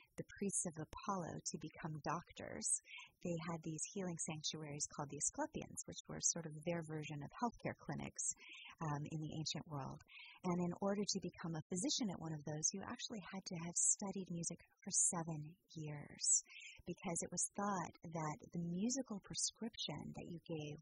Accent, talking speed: American, 175 wpm